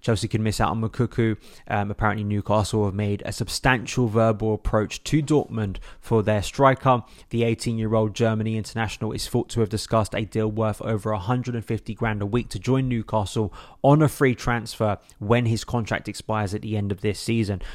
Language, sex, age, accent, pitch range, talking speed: English, male, 20-39, British, 105-120 Hz, 185 wpm